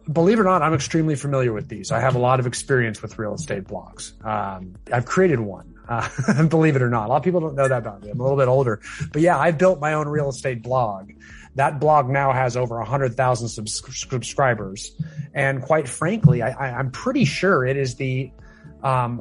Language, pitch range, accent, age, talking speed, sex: English, 115-140 Hz, American, 30-49, 220 wpm, male